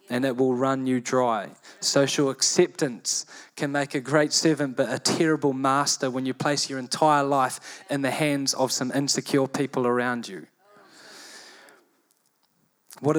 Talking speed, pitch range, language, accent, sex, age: 150 wpm, 130-155 Hz, English, Australian, male, 20-39